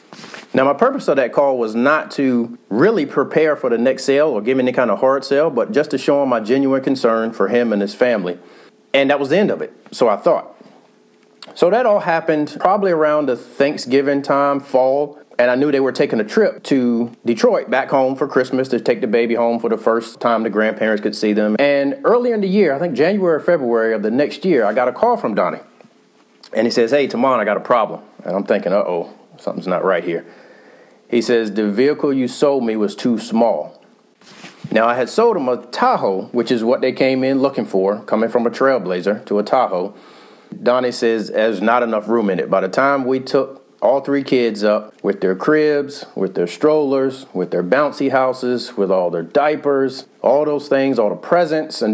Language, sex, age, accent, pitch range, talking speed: English, male, 40-59, American, 115-140 Hz, 220 wpm